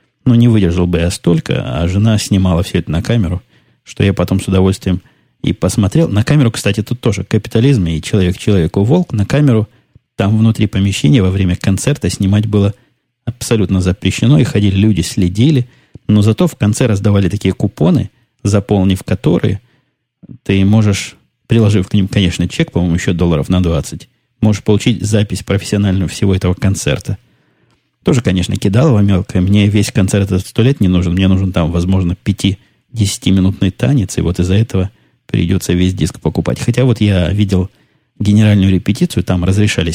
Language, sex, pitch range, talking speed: Russian, male, 95-115 Hz, 160 wpm